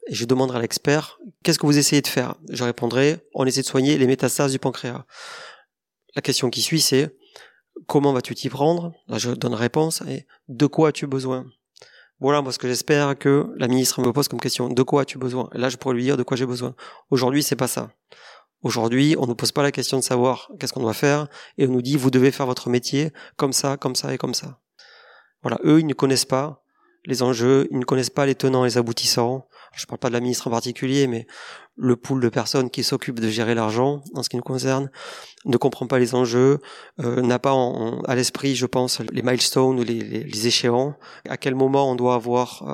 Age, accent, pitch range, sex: 30-49, French, 125-140 Hz, male